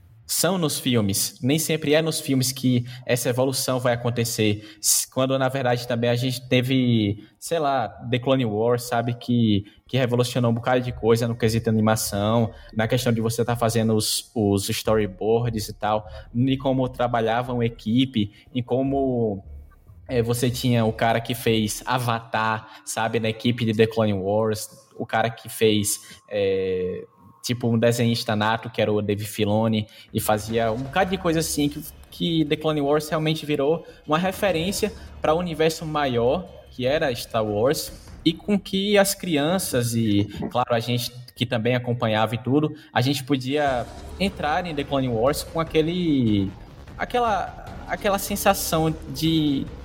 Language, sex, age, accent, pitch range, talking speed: Portuguese, male, 10-29, Brazilian, 110-145 Hz, 160 wpm